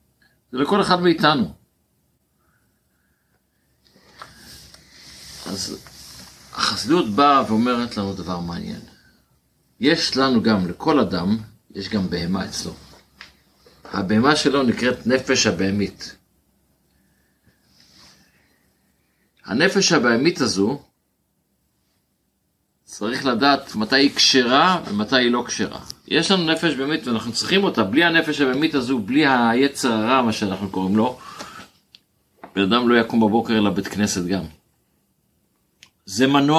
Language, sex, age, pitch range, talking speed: Hebrew, male, 50-69, 110-140 Hz, 105 wpm